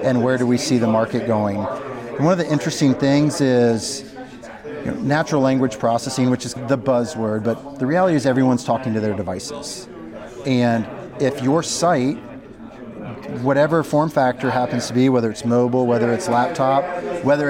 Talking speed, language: 160 wpm, English